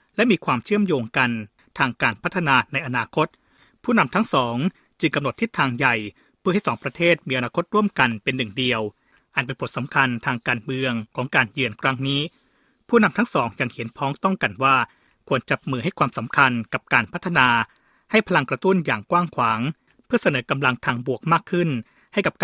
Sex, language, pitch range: male, Thai, 125-170 Hz